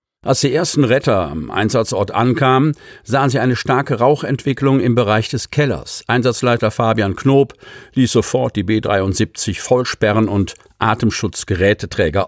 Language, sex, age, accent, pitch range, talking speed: German, male, 50-69, German, 105-130 Hz, 125 wpm